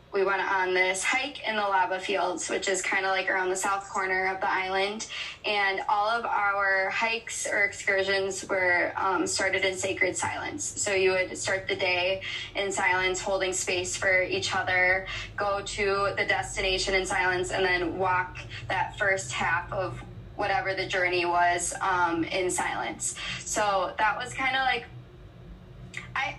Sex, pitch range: female, 185-225 Hz